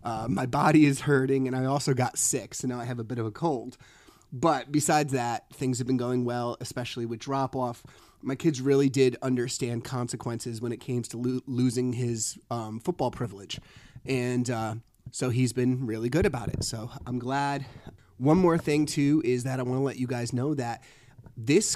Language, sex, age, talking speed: English, male, 30-49, 200 wpm